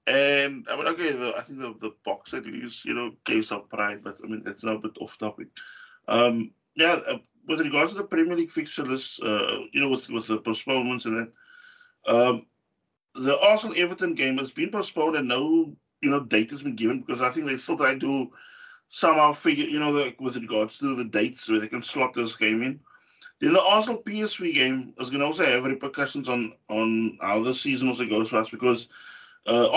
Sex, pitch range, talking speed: male, 115-160 Hz, 220 wpm